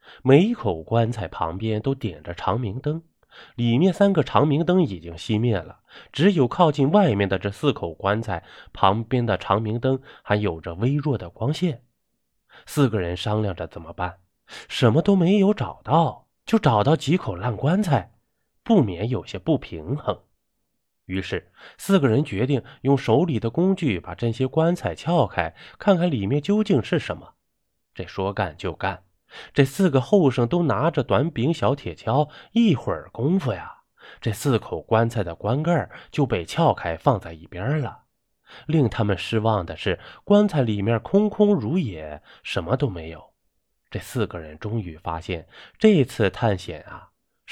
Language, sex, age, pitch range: Chinese, male, 20-39, 95-155 Hz